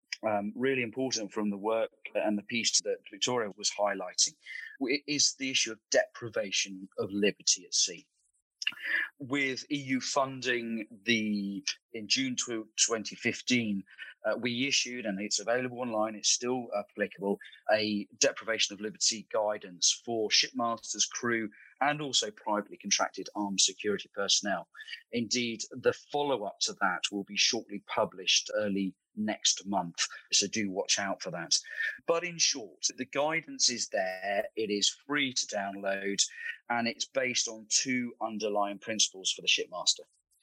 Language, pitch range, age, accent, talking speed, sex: English, 105-130 Hz, 30-49, British, 140 wpm, male